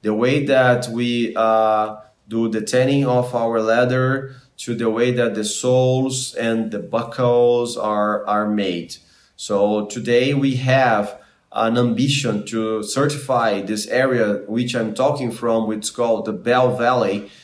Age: 20-39